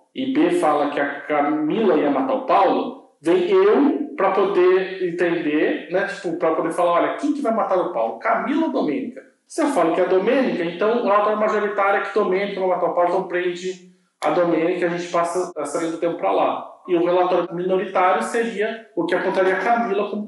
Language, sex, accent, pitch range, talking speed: Portuguese, male, Brazilian, 170-250 Hz, 215 wpm